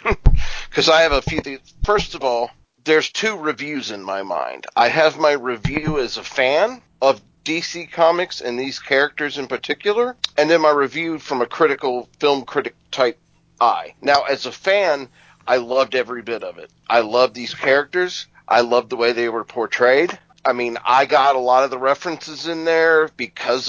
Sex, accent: male, American